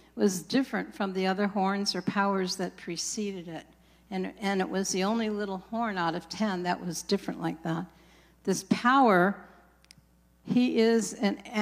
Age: 60-79